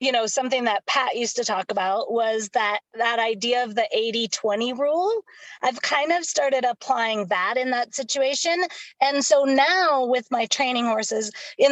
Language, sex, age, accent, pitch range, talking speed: English, female, 20-39, American, 230-285 Hz, 180 wpm